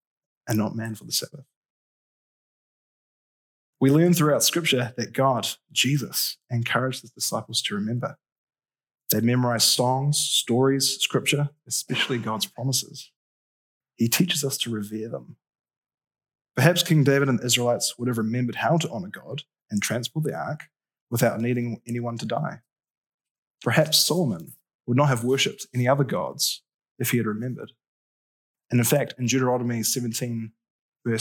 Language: English